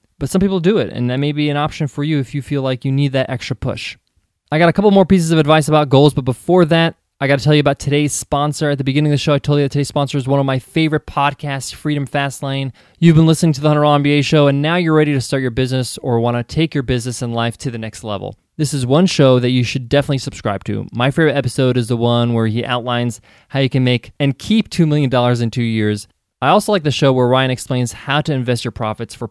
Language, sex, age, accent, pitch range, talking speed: English, male, 20-39, American, 125-155 Hz, 280 wpm